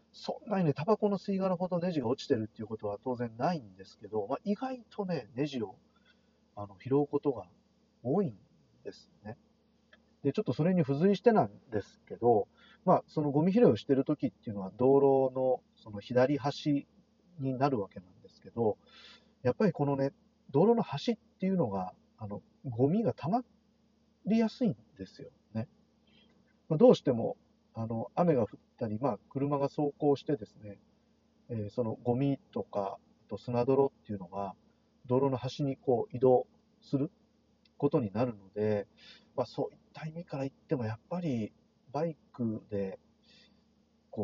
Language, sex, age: Japanese, male, 40-59